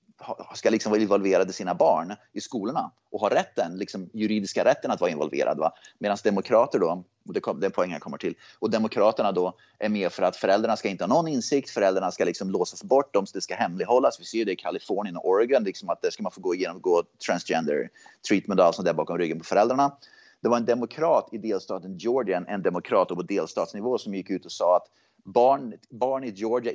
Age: 30-49